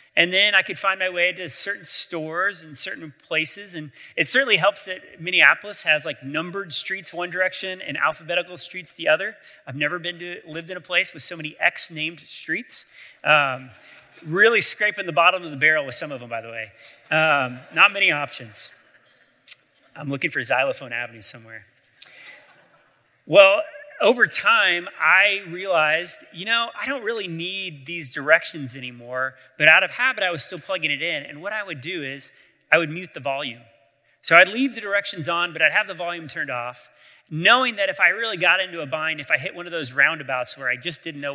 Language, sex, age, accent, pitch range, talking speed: English, male, 30-49, American, 135-180 Hz, 200 wpm